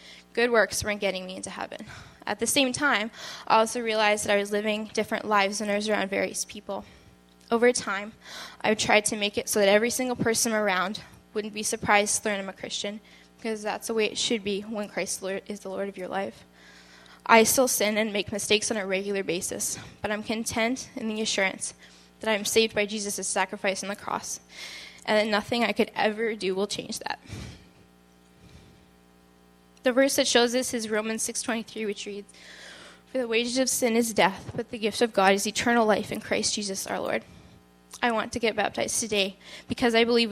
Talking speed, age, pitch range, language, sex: 200 wpm, 10-29, 195-225 Hz, English, female